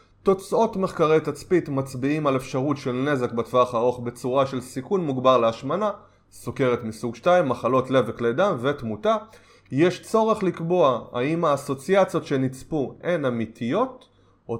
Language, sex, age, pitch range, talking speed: Hebrew, male, 20-39, 120-165 Hz, 130 wpm